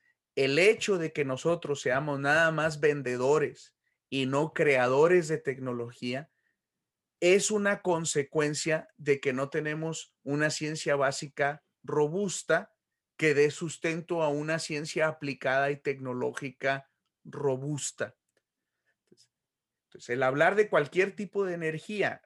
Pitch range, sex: 140-180 Hz, male